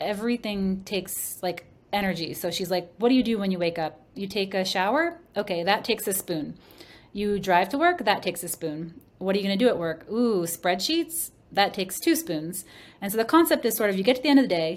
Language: English